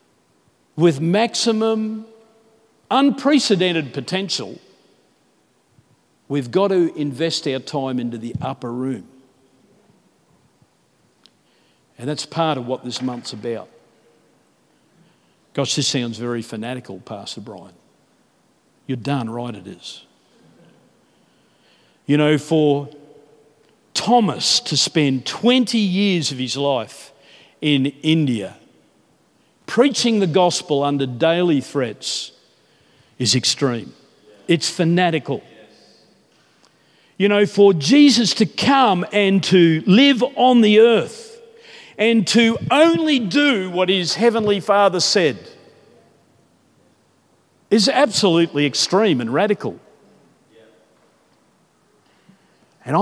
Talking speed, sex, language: 95 wpm, male, English